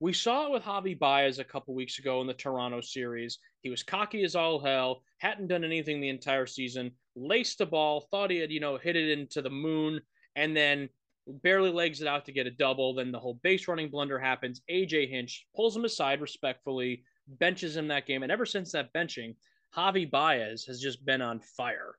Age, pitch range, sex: 20-39, 130-180 Hz, male